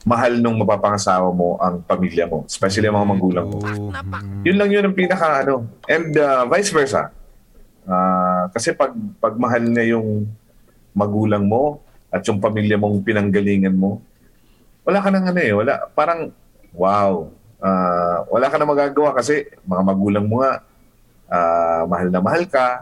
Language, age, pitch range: Filipino, 30-49, 90-115 Hz